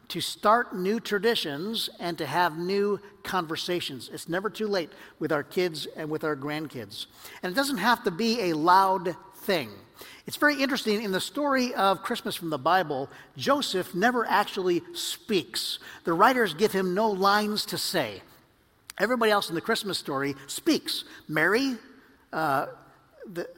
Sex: male